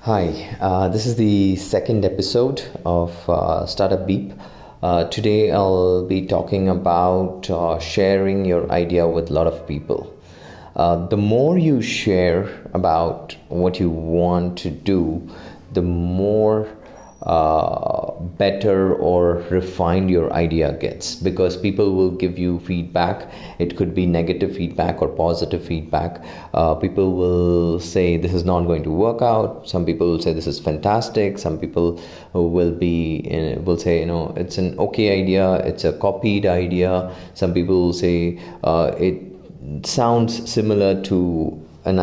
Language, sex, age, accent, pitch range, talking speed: English, male, 30-49, Indian, 85-95 Hz, 150 wpm